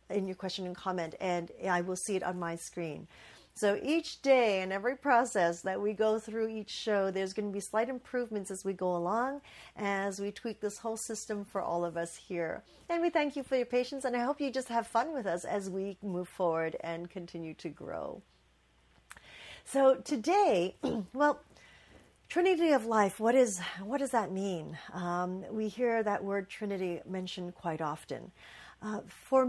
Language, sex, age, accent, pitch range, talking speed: English, female, 40-59, American, 175-230 Hz, 185 wpm